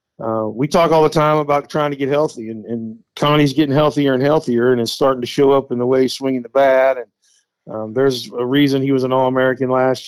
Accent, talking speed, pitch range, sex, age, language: American, 245 wpm, 125-145 Hz, male, 50-69, English